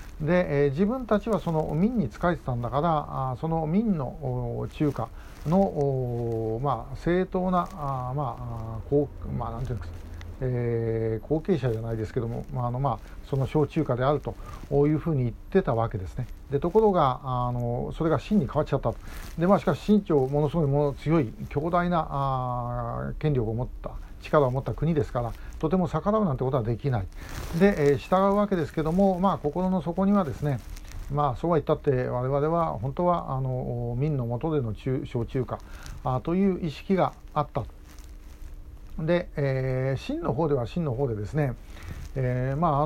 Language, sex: Japanese, male